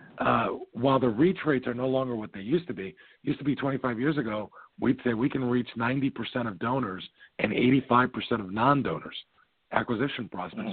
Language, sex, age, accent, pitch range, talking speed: English, male, 50-69, American, 110-130 Hz, 185 wpm